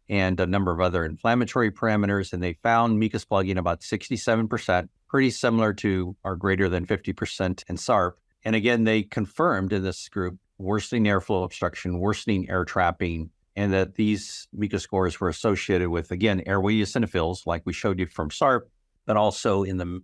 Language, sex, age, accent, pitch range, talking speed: English, male, 50-69, American, 90-105 Hz, 170 wpm